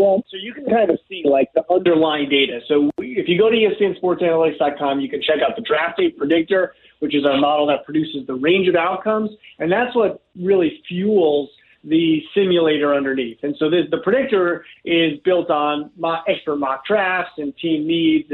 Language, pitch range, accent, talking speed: English, 145-185 Hz, American, 185 wpm